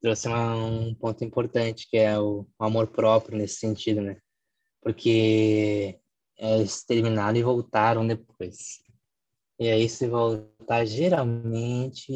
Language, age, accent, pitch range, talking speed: Portuguese, 10-29, Brazilian, 110-130 Hz, 115 wpm